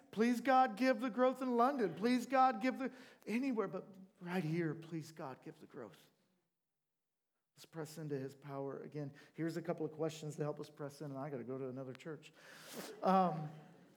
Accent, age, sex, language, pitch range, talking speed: American, 40-59, male, English, 140-180 Hz, 195 wpm